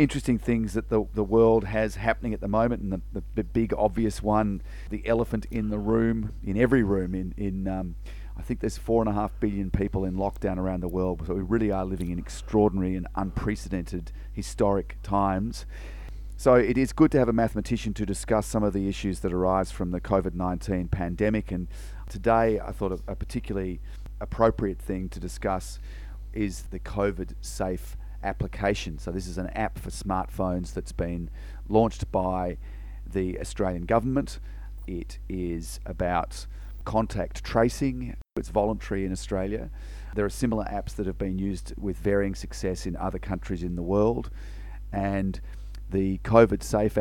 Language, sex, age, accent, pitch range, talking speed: English, male, 30-49, Australian, 95-105 Hz, 170 wpm